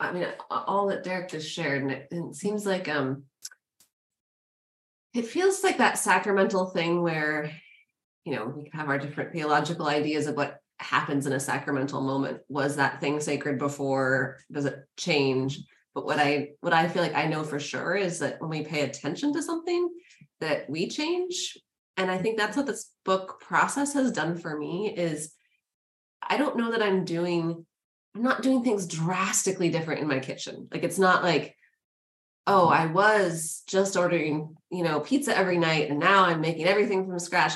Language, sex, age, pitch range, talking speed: English, female, 20-39, 150-215 Hz, 180 wpm